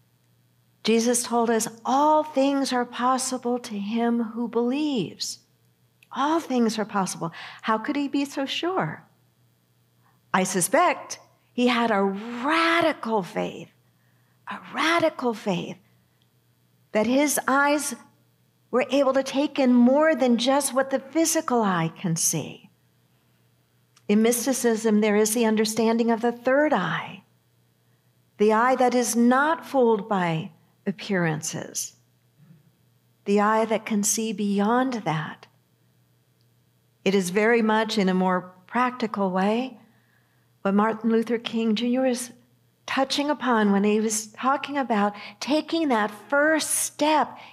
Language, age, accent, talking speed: English, 50-69, American, 125 wpm